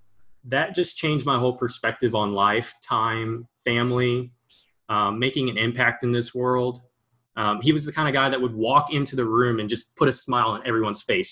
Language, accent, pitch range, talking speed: English, American, 115-135 Hz, 200 wpm